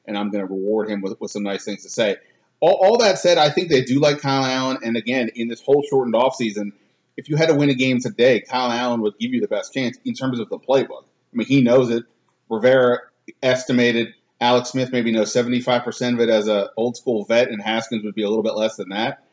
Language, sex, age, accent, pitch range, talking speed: English, male, 30-49, American, 110-130 Hz, 250 wpm